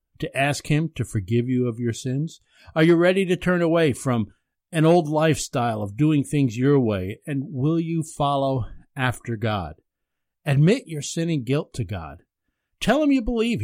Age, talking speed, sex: 50-69, 180 wpm, male